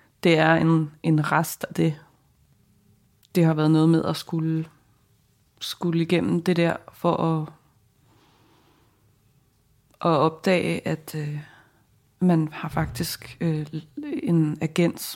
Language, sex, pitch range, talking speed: English, female, 140-170 Hz, 110 wpm